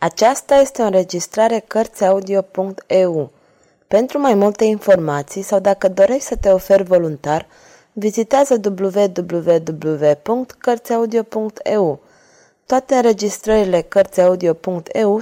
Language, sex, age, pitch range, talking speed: Romanian, female, 20-39, 180-225 Hz, 85 wpm